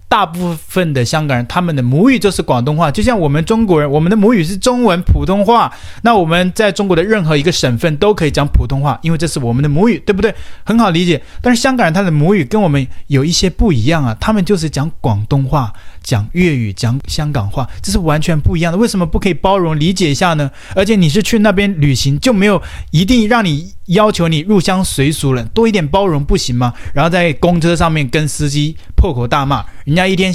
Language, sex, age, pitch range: Chinese, male, 30-49, 135-195 Hz